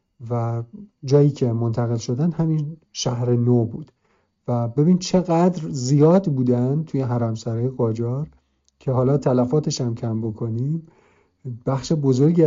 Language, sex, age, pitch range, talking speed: Arabic, male, 50-69, 115-135 Hz, 120 wpm